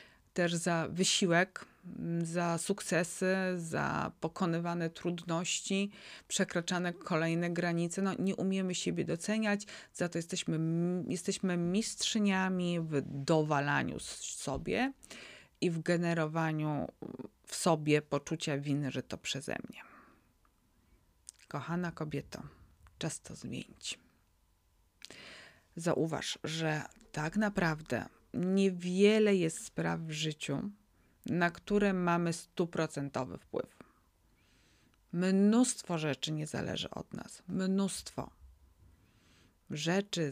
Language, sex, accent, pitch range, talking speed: Polish, female, native, 160-190 Hz, 90 wpm